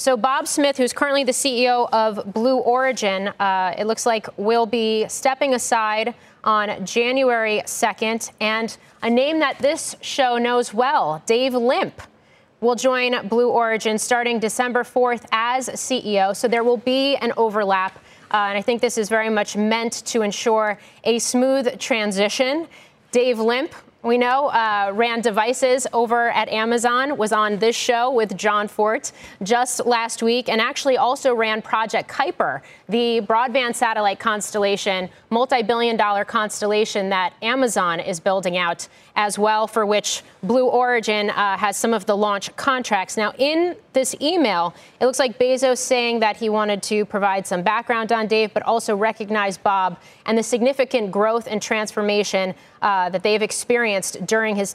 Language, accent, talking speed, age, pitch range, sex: English, American, 160 wpm, 30-49, 210-250 Hz, female